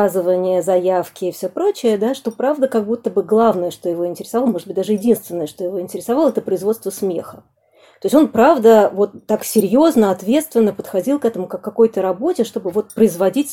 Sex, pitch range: female, 195-240 Hz